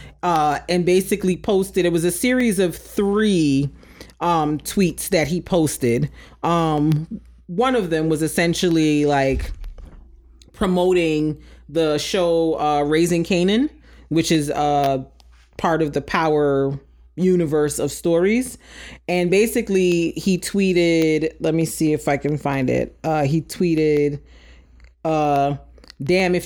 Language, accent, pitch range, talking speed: English, American, 145-185 Hz, 125 wpm